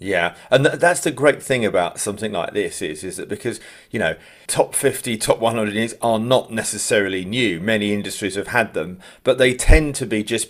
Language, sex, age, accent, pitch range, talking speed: English, male, 40-59, British, 95-125 Hz, 200 wpm